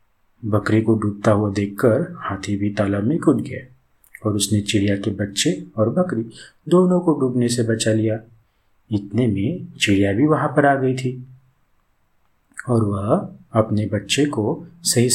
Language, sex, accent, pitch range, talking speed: Hindi, male, native, 100-135 Hz, 155 wpm